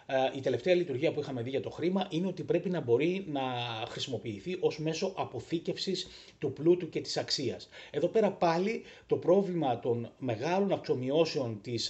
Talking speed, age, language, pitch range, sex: 165 wpm, 30-49, Greek, 120-170 Hz, male